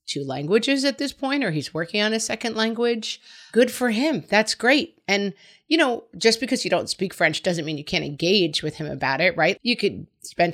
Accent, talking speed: American, 220 wpm